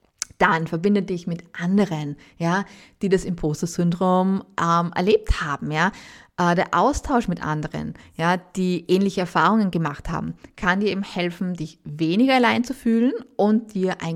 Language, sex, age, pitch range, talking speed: German, female, 20-39, 165-195 Hz, 155 wpm